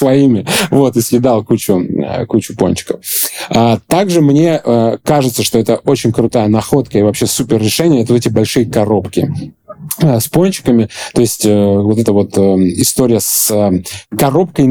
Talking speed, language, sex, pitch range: 140 wpm, Russian, male, 100-125 Hz